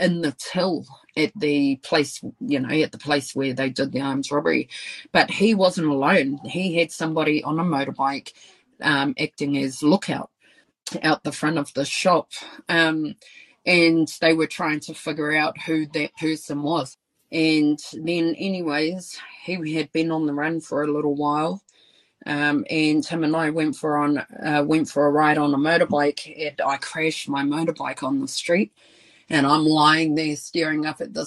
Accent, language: Australian, English